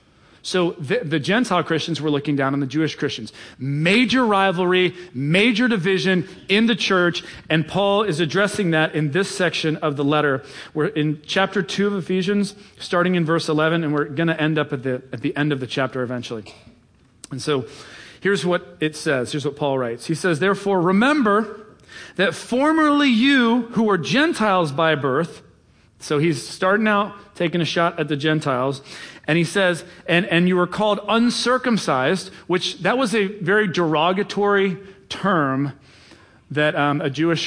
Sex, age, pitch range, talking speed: male, 40-59, 140-195 Hz, 170 wpm